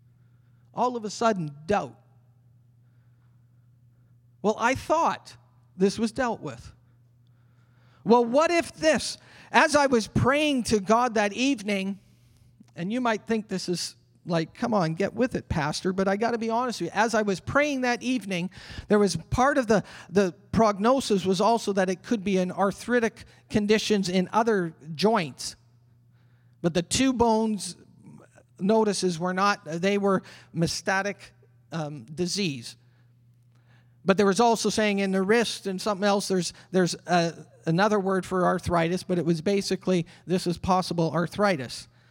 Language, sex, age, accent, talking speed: English, male, 40-59, American, 155 wpm